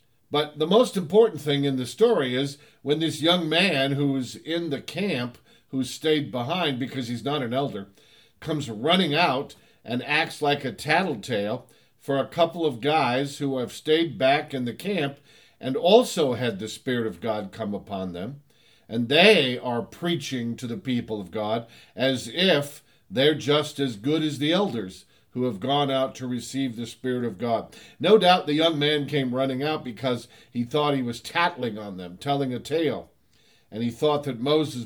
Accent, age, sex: American, 50-69, male